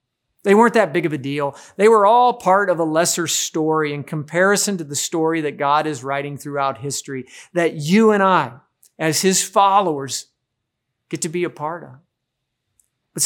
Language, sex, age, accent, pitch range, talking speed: English, male, 40-59, American, 135-175 Hz, 180 wpm